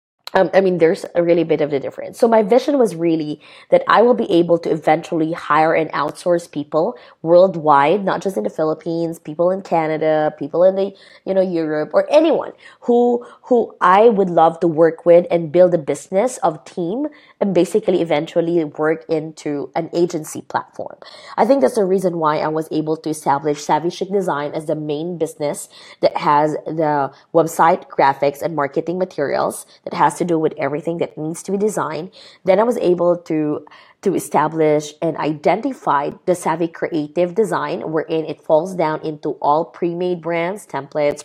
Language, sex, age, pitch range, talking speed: English, female, 20-39, 155-185 Hz, 180 wpm